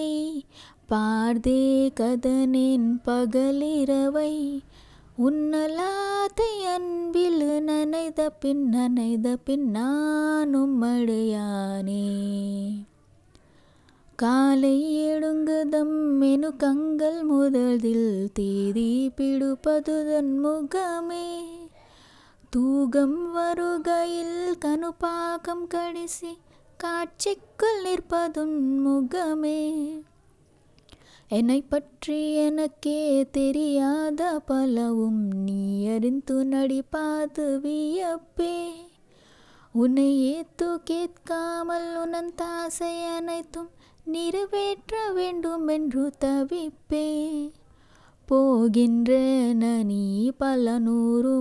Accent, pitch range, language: native, 240-330 Hz, Telugu